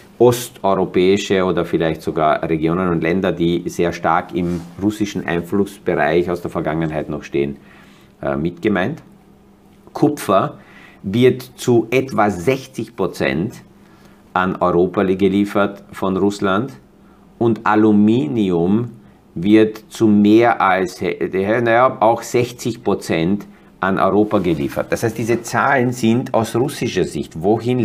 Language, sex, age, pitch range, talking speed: German, male, 50-69, 95-115 Hz, 110 wpm